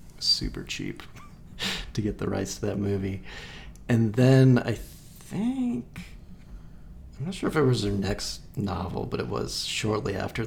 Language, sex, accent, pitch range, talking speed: English, male, American, 100-130 Hz, 155 wpm